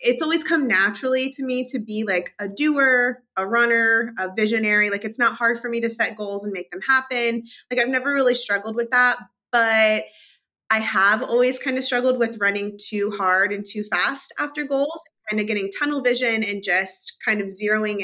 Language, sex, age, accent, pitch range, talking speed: English, female, 20-39, American, 200-250 Hz, 205 wpm